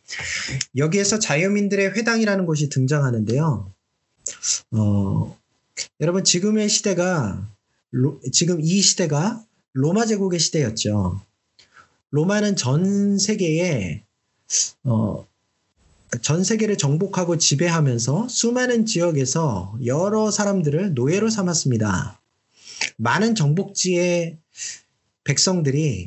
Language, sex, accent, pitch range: Korean, male, native, 130-195 Hz